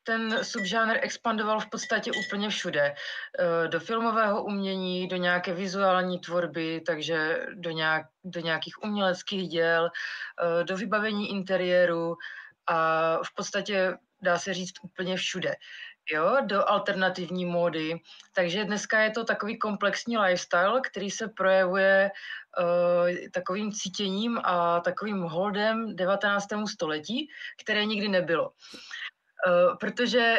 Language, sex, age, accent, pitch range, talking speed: Czech, female, 30-49, native, 180-215 Hz, 110 wpm